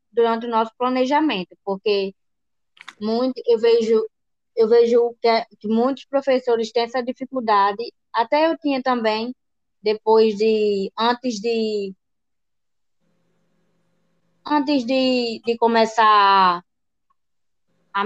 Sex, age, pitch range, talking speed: female, 20-39, 205-250 Hz, 90 wpm